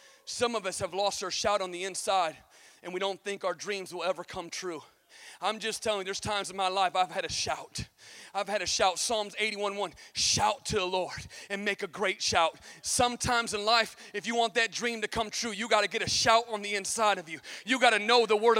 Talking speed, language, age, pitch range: 245 wpm, English, 30-49, 230-350 Hz